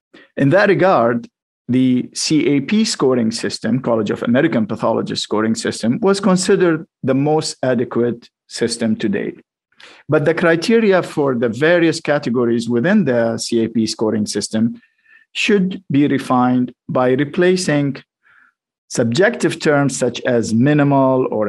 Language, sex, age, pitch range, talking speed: English, male, 50-69, 125-165 Hz, 125 wpm